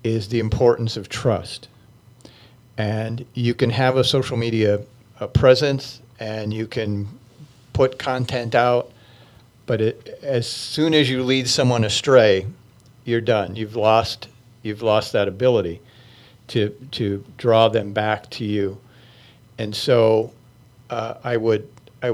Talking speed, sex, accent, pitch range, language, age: 135 wpm, male, American, 110-125 Hz, English, 50-69